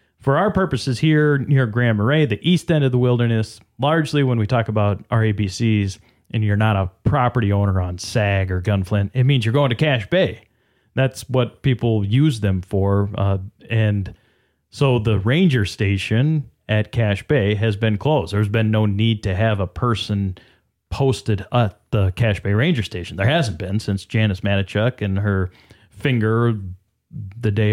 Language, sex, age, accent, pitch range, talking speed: English, male, 30-49, American, 100-125 Hz, 175 wpm